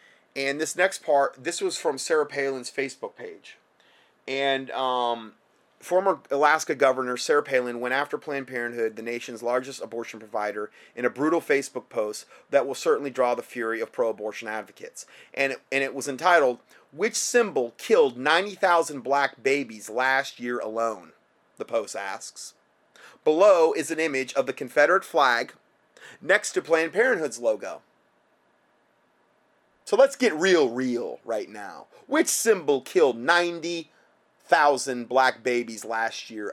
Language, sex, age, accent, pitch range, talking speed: English, male, 30-49, American, 125-180 Hz, 140 wpm